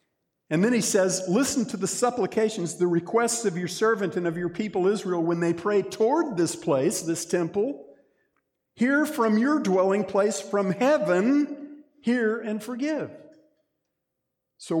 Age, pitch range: 50-69, 135-215 Hz